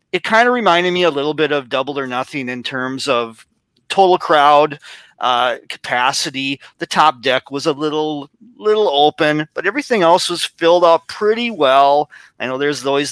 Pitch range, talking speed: 125-165 Hz, 180 wpm